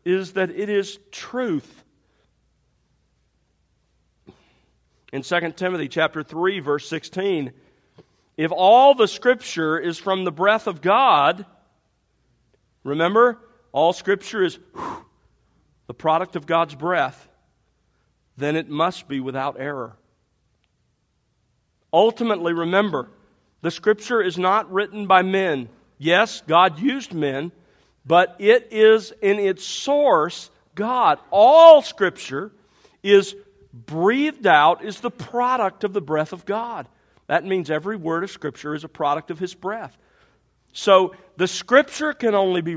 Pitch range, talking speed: 155-205 Hz, 125 wpm